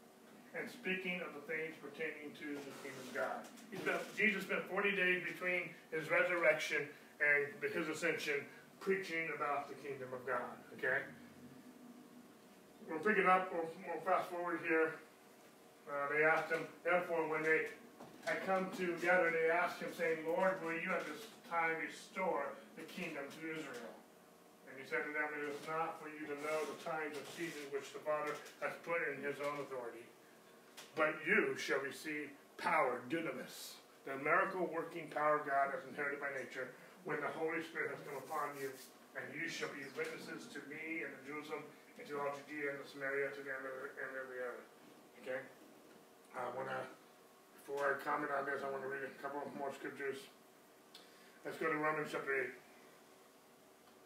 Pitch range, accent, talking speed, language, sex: 145-175 Hz, American, 175 wpm, English, male